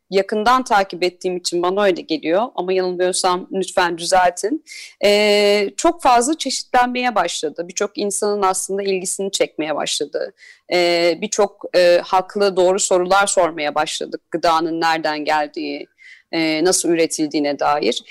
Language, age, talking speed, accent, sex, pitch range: Turkish, 40-59, 125 wpm, native, female, 180-275 Hz